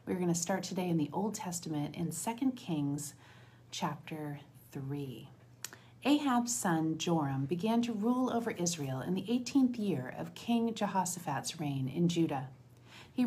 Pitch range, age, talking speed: 145-205 Hz, 40-59, 150 wpm